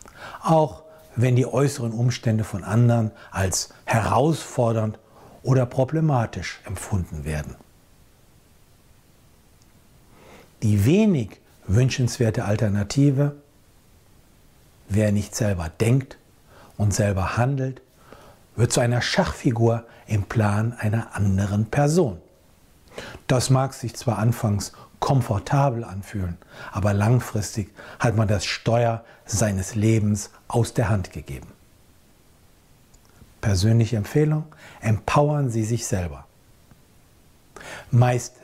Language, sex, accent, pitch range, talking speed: German, male, German, 100-130 Hz, 90 wpm